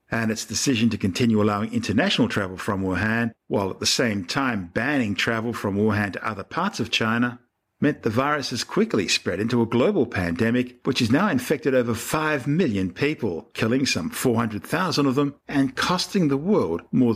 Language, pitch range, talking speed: English, 105-140 Hz, 190 wpm